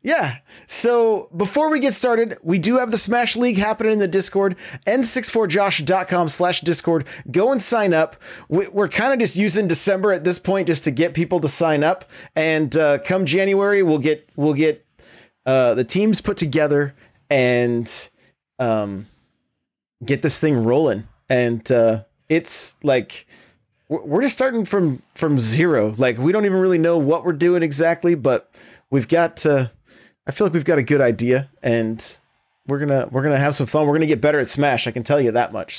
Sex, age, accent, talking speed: male, 30-49, American, 185 wpm